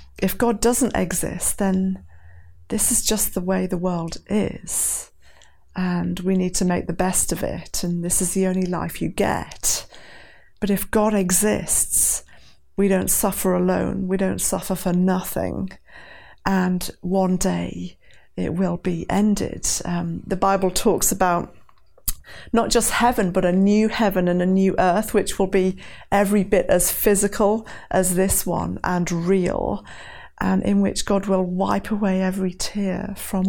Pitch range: 180-195 Hz